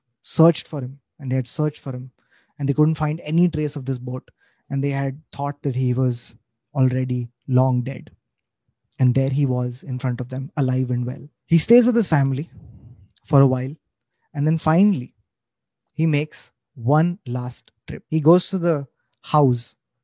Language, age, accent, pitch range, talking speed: English, 20-39, Indian, 130-160 Hz, 180 wpm